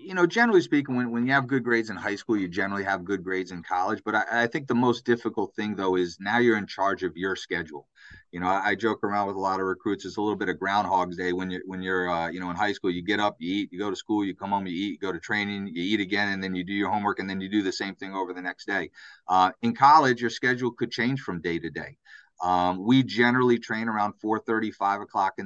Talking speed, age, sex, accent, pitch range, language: 290 wpm, 30-49, male, American, 95-115 Hz, English